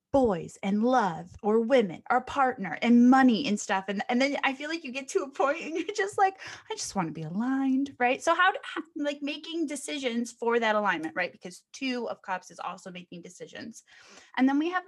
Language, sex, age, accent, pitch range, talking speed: English, female, 20-39, American, 190-265 Hz, 220 wpm